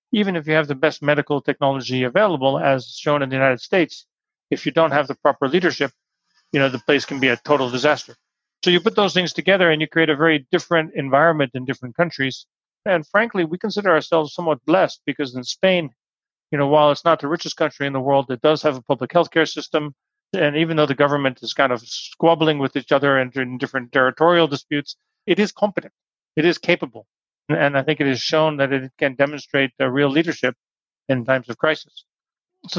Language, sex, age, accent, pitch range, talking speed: English, male, 40-59, American, 135-160 Hz, 210 wpm